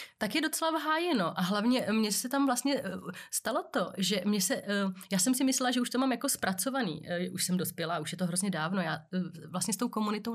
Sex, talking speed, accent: female, 220 wpm, native